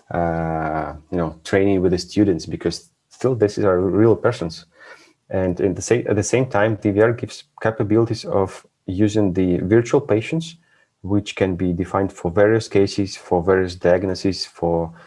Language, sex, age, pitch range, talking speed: English, male, 30-49, 90-105 Hz, 165 wpm